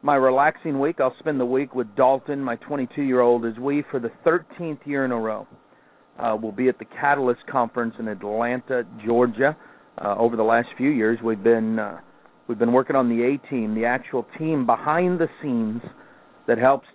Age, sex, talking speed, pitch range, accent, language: 50-69, male, 190 wpm, 120-150 Hz, American, English